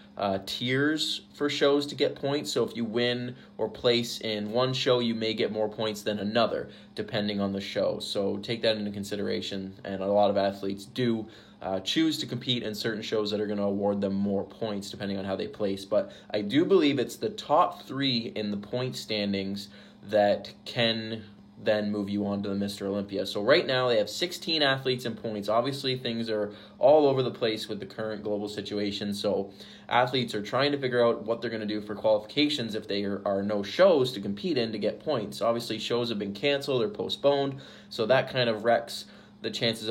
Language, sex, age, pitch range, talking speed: English, male, 20-39, 100-120 Hz, 210 wpm